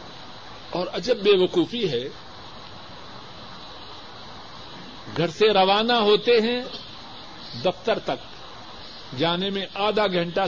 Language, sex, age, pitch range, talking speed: Urdu, male, 50-69, 170-225 Hz, 90 wpm